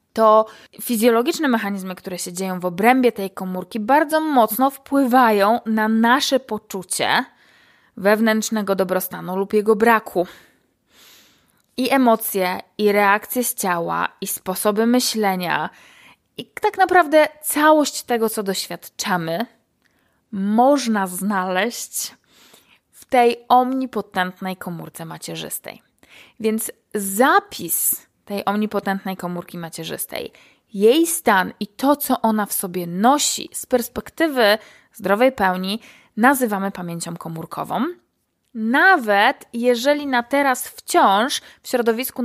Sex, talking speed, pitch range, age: female, 105 wpm, 195-255 Hz, 20-39